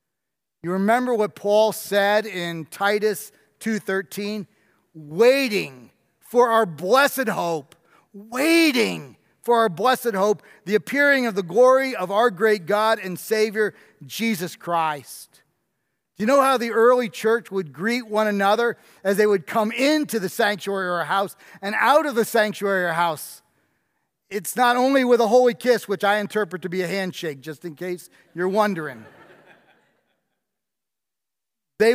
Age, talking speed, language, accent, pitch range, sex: 40-59, 150 wpm, English, American, 180-225 Hz, male